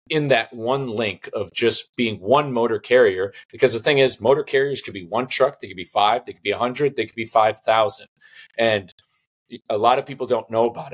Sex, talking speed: male, 230 wpm